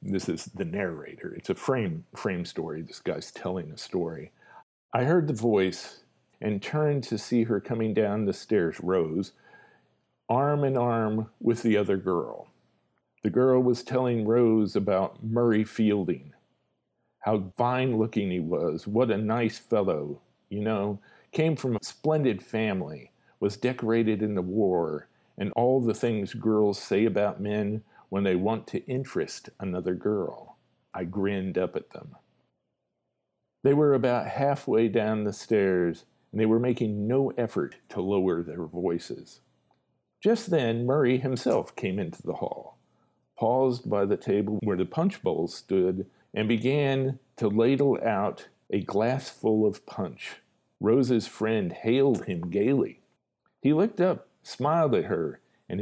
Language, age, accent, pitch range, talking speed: English, 50-69, American, 105-130 Hz, 150 wpm